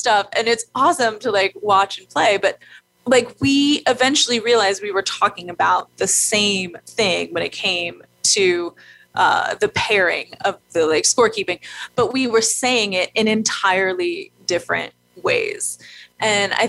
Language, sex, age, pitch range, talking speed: English, female, 20-39, 185-260 Hz, 155 wpm